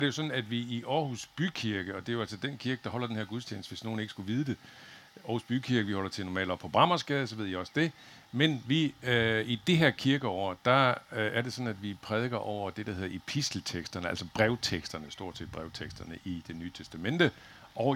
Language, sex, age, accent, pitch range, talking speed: Danish, male, 60-79, native, 95-130 Hz, 235 wpm